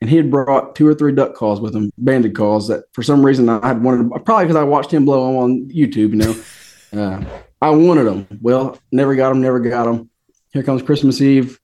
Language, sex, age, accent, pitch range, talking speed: English, male, 30-49, American, 115-150 Hz, 230 wpm